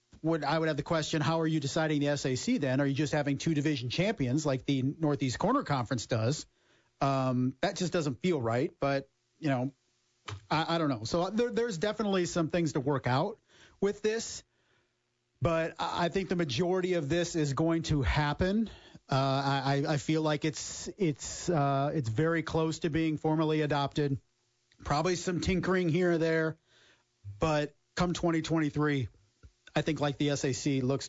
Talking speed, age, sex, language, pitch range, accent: 175 wpm, 40-59, male, English, 135-165 Hz, American